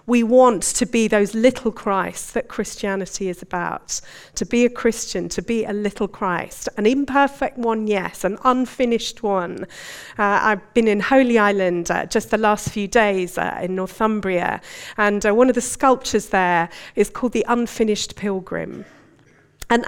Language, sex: English, female